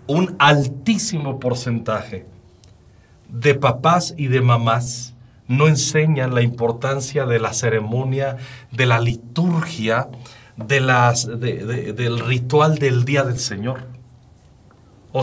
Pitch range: 120-145 Hz